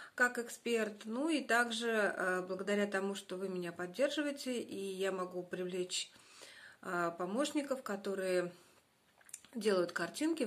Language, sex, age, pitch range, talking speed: Russian, female, 30-49, 185-230 Hz, 110 wpm